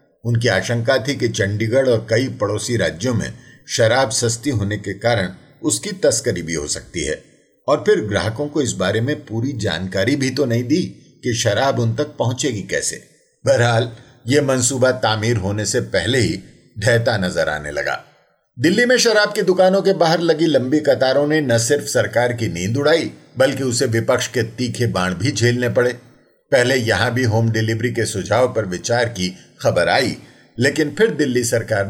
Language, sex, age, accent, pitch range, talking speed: Hindi, male, 50-69, native, 110-145 Hz, 125 wpm